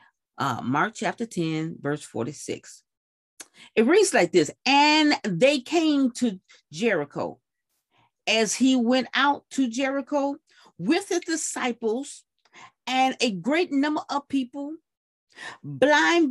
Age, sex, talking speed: 40-59, female, 115 wpm